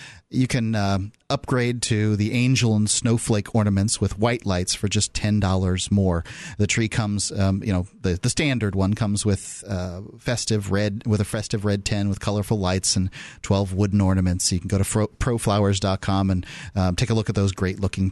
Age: 30-49